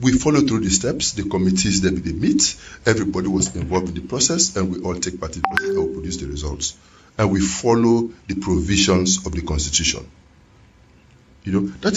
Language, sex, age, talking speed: English, male, 50-69, 195 wpm